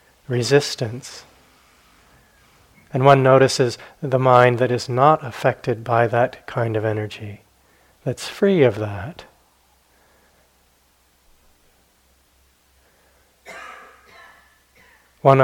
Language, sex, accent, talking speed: English, male, American, 80 wpm